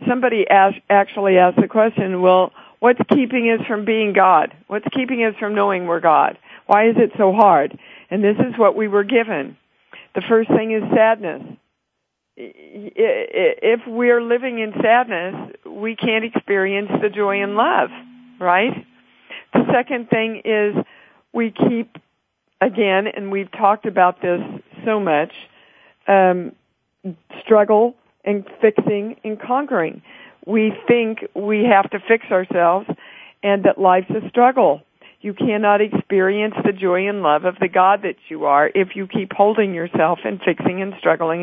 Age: 50-69